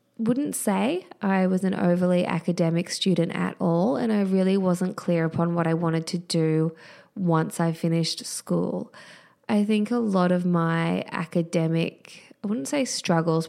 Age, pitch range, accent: 20-39, 170-205 Hz, Australian